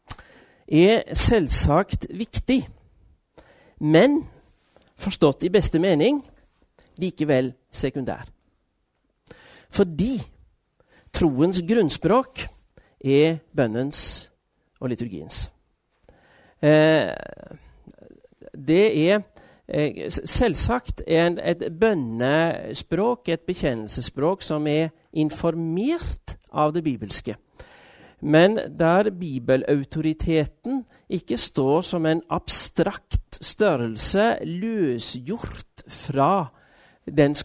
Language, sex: Danish, male